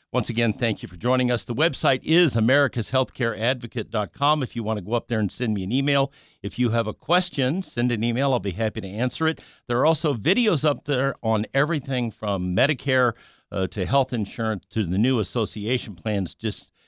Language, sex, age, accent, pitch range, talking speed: English, male, 50-69, American, 105-135 Hz, 205 wpm